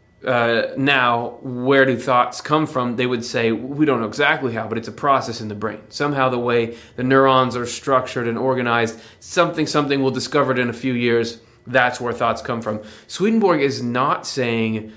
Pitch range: 115-140 Hz